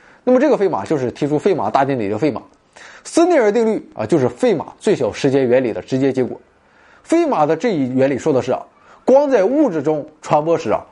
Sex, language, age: male, Chinese, 20-39